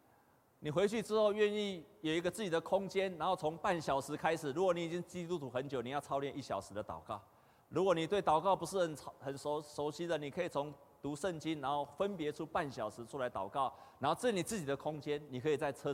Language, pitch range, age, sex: Chinese, 120-170 Hz, 30-49, male